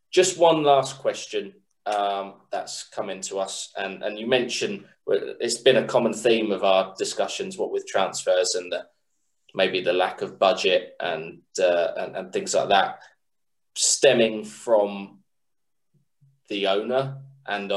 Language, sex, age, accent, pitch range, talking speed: English, male, 20-39, British, 100-165 Hz, 145 wpm